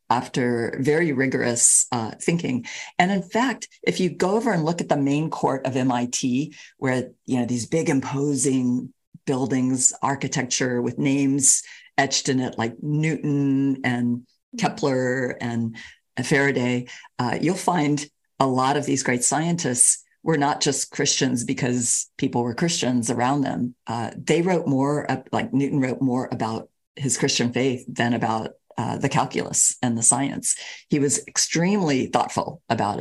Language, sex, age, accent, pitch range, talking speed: English, female, 50-69, American, 125-150 Hz, 155 wpm